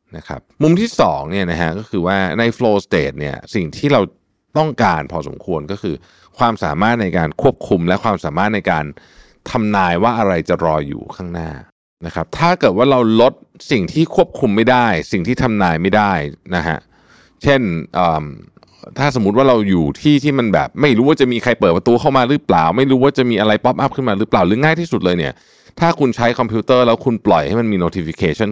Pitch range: 90-125 Hz